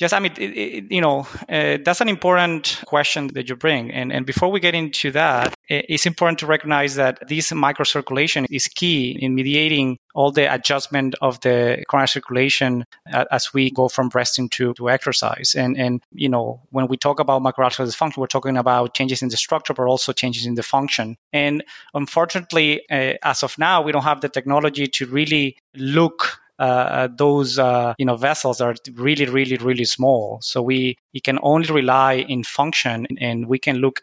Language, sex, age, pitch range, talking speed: English, male, 20-39, 125-145 Hz, 195 wpm